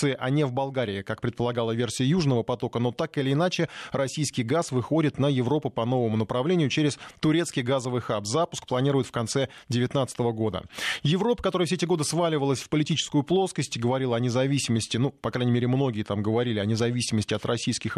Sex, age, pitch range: male, 20-39, 120-150 Hz